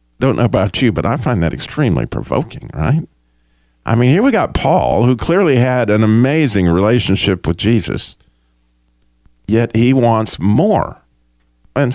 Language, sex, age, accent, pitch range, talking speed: English, male, 50-69, American, 85-120 Hz, 150 wpm